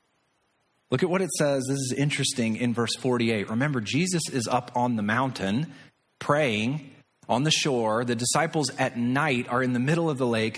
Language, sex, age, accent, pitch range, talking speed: English, male, 30-49, American, 115-145 Hz, 185 wpm